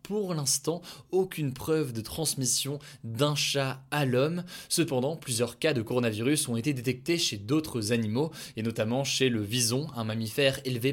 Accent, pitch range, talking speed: French, 120-145 Hz, 160 wpm